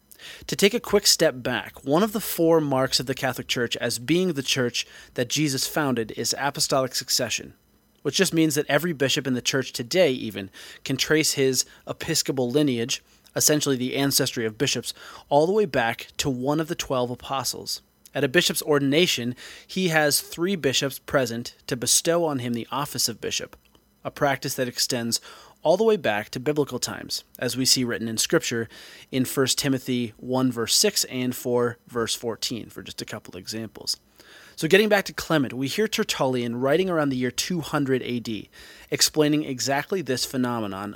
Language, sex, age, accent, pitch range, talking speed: English, male, 30-49, American, 125-155 Hz, 180 wpm